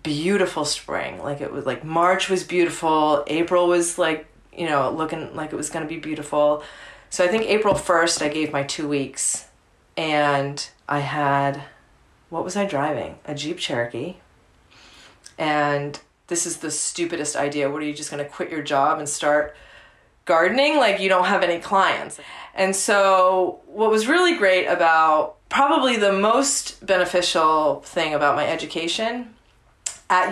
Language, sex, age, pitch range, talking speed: English, female, 30-49, 150-180 Hz, 160 wpm